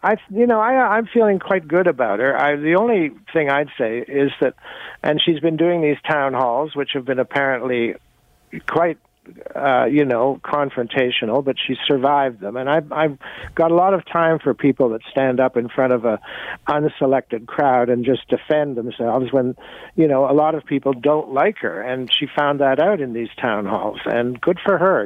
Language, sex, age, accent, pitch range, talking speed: English, male, 60-79, American, 125-160 Hz, 200 wpm